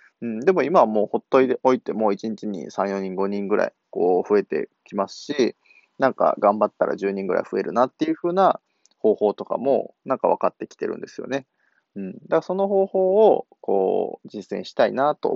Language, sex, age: Japanese, male, 20-39